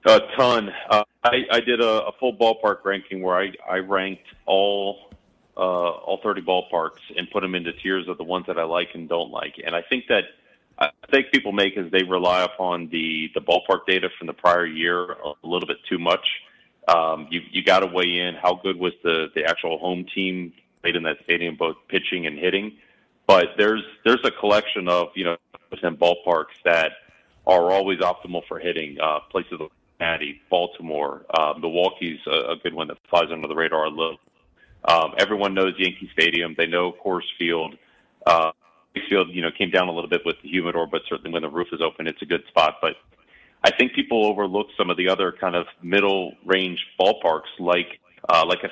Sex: male